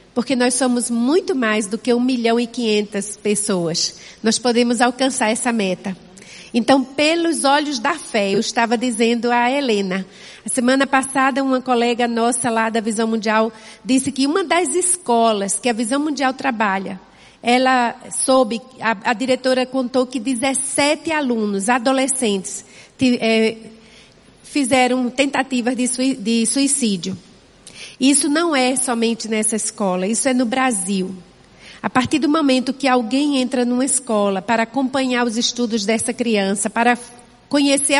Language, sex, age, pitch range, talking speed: Portuguese, female, 40-59, 225-270 Hz, 135 wpm